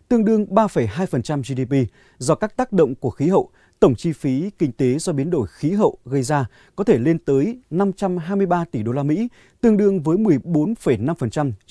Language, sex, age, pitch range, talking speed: Vietnamese, male, 20-39, 130-190 Hz, 185 wpm